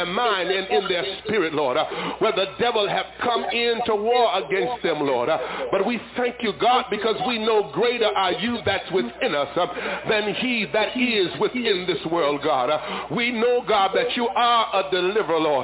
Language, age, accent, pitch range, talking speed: English, 60-79, American, 210-245 Hz, 185 wpm